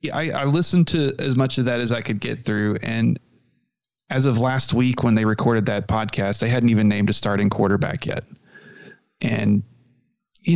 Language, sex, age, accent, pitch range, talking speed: English, male, 30-49, American, 110-135 Hz, 195 wpm